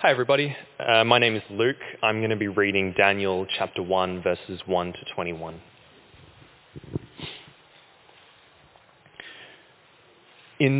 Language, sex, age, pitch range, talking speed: English, male, 20-39, 90-120 Hz, 110 wpm